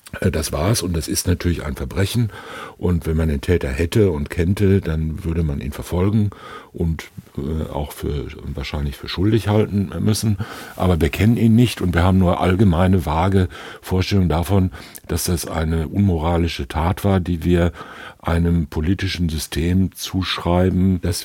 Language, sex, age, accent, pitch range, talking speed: German, male, 60-79, German, 85-100 Hz, 160 wpm